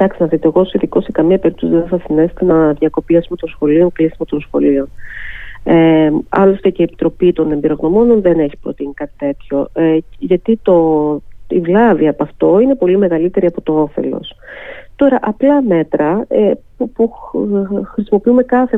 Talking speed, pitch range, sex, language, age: 160 wpm, 155-190 Hz, female, Greek, 30-49